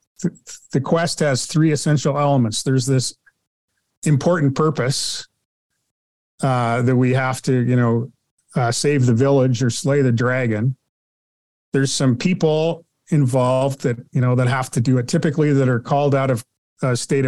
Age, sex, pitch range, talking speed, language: 40-59, male, 125-145 Hz, 155 wpm, English